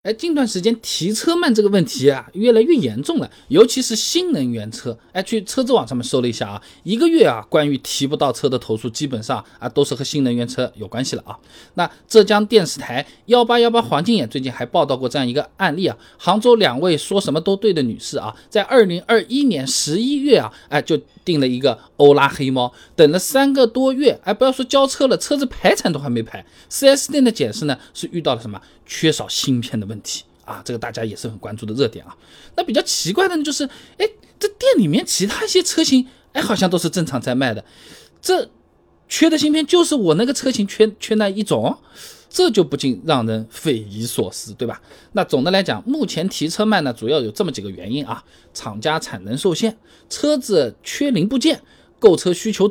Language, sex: Chinese, male